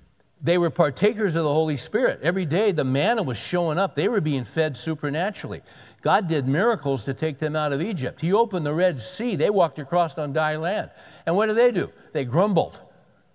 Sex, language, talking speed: male, English, 205 wpm